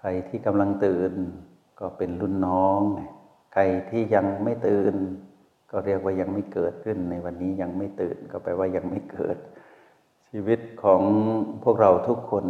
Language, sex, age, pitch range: Thai, male, 60-79, 95-105 Hz